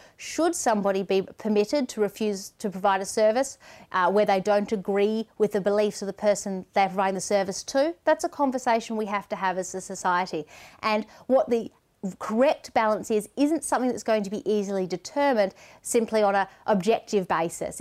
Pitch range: 200-245 Hz